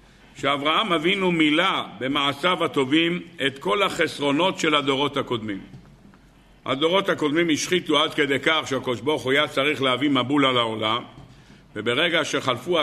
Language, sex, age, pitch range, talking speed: Hebrew, male, 50-69, 140-175 Hz, 120 wpm